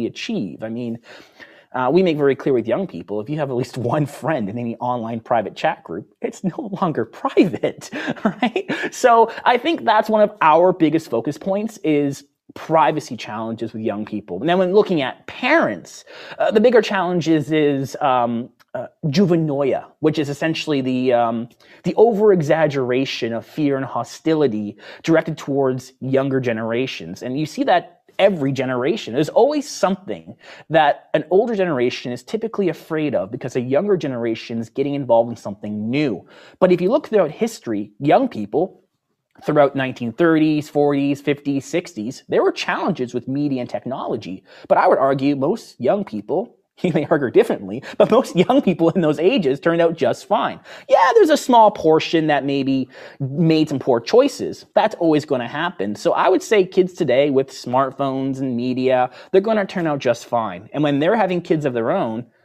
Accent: American